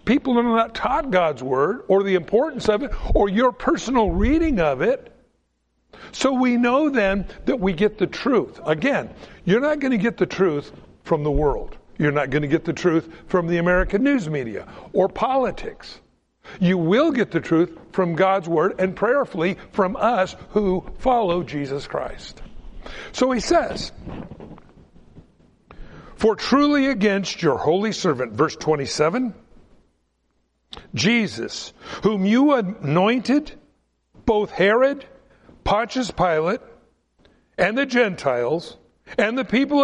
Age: 60-79